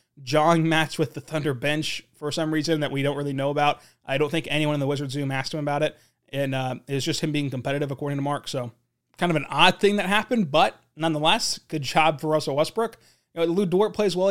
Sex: male